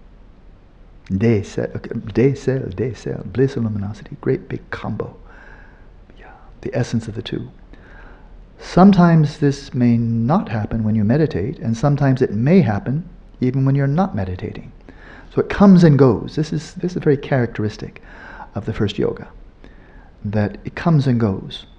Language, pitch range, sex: English, 100-130 Hz, male